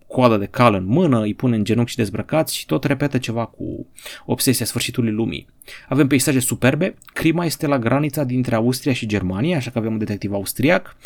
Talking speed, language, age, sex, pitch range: 195 wpm, Romanian, 30-49, male, 110-145 Hz